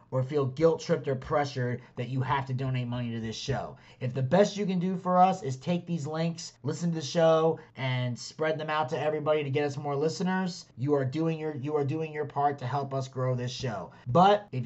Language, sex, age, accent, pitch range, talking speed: English, male, 30-49, American, 140-175 Hz, 240 wpm